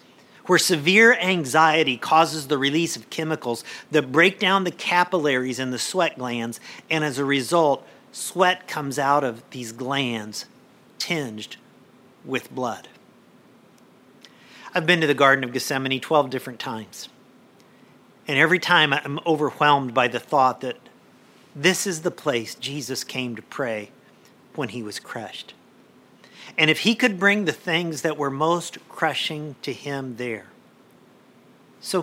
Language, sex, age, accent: English, male, 50-69, American